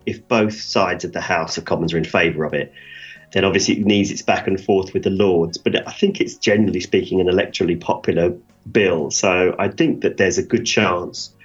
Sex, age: male, 40-59